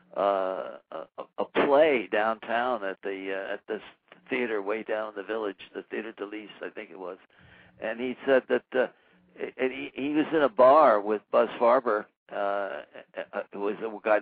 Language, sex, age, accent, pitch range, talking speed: English, male, 60-79, American, 110-145 Hz, 185 wpm